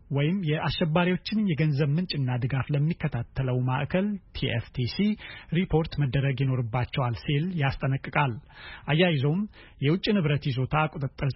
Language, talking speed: Amharic, 95 wpm